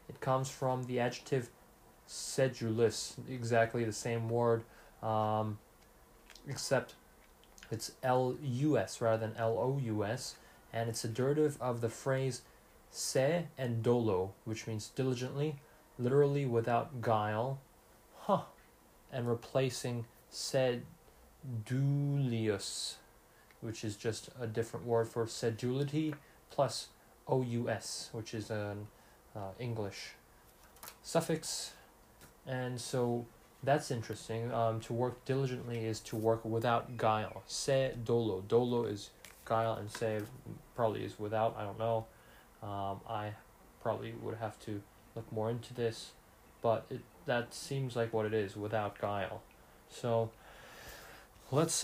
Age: 20-39